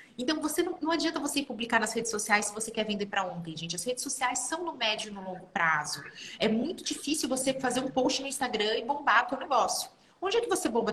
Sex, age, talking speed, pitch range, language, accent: female, 30-49, 255 wpm, 210-270 Hz, Portuguese, Brazilian